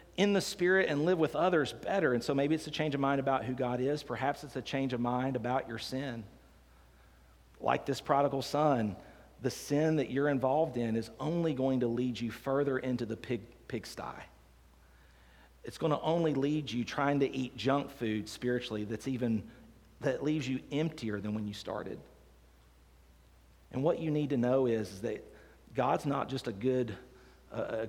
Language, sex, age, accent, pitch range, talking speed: English, male, 40-59, American, 100-135 Hz, 185 wpm